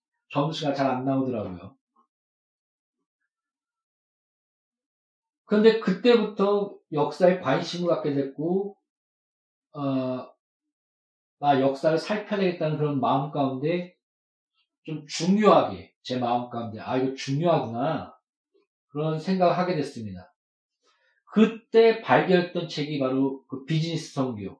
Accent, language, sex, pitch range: native, Korean, male, 140-200 Hz